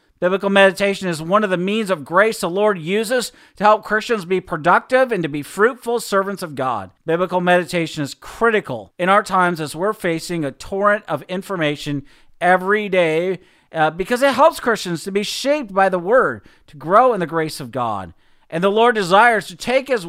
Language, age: English, 50-69